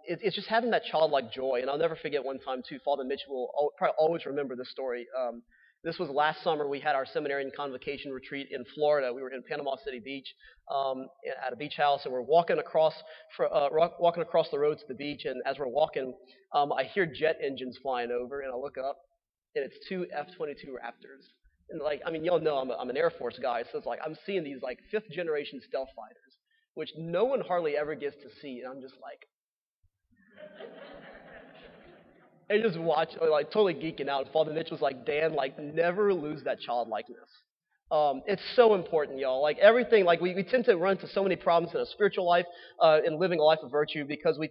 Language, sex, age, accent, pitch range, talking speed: English, male, 30-49, American, 140-190 Hz, 210 wpm